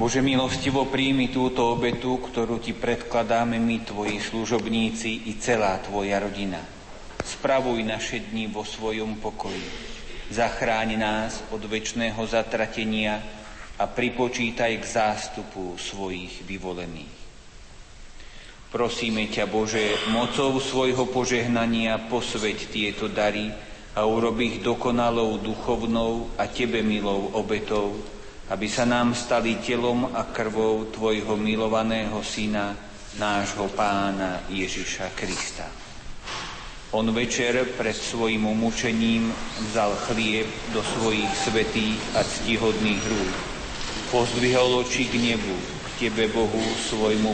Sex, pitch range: male, 105-115 Hz